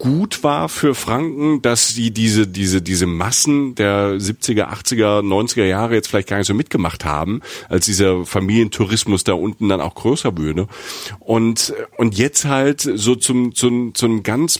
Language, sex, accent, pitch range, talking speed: German, male, German, 110-140 Hz, 165 wpm